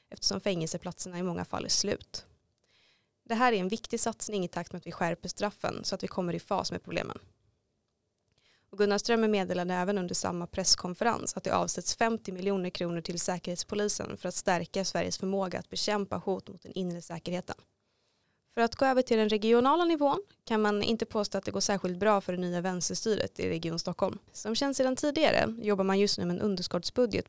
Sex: female